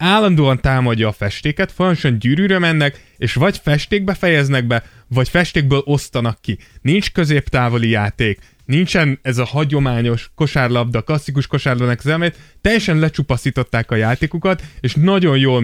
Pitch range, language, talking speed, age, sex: 125-155 Hz, Hungarian, 125 wpm, 20-39, male